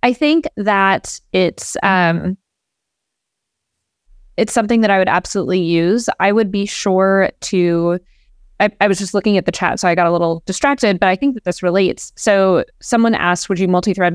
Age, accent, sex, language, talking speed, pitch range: 20-39, American, female, English, 180 wpm, 175-210 Hz